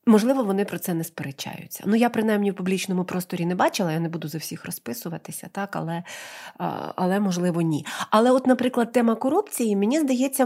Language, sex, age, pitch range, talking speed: Ukrainian, female, 30-49, 180-235 Hz, 185 wpm